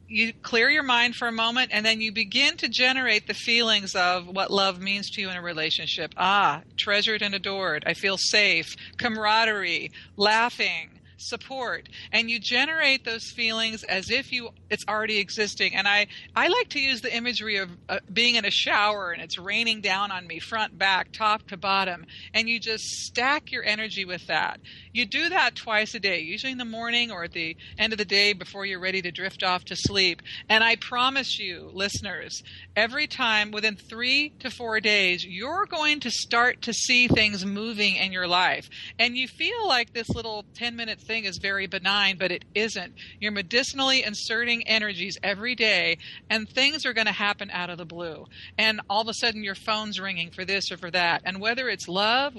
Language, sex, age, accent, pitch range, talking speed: English, female, 40-59, American, 185-230 Hz, 200 wpm